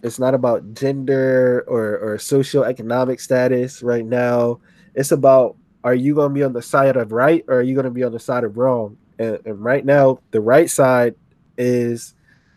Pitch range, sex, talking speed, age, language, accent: 125-145 Hz, male, 195 wpm, 20-39, English, American